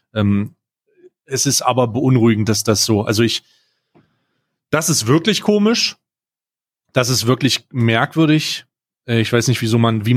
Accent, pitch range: German, 115-140 Hz